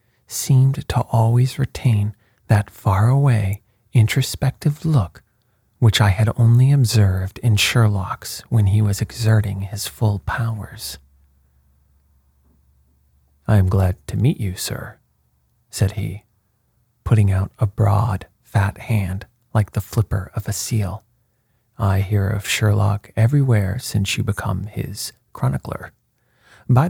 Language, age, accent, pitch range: English, 40-59, American, 100-120 Hz